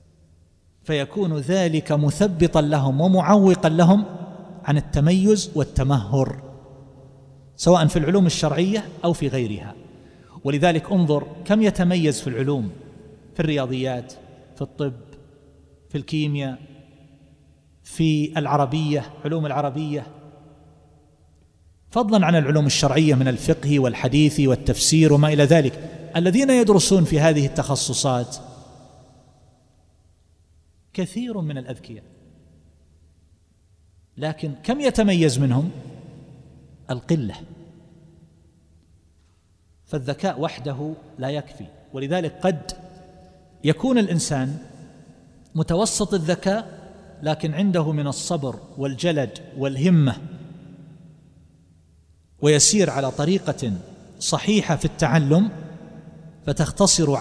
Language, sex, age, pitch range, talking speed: Arabic, male, 40-59, 125-170 Hz, 85 wpm